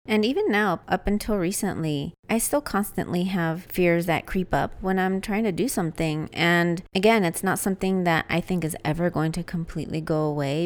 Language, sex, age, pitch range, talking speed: English, female, 30-49, 165-210 Hz, 195 wpm